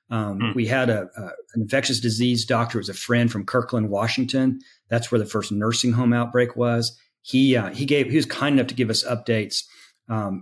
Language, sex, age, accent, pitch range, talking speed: English, male, 40-59, American, 110-125 Hz, 215 wpm